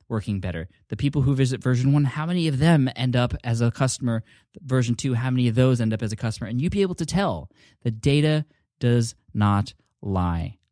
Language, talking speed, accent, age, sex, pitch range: English, 220 wpm, American, 20-39, male, 105-130 Hz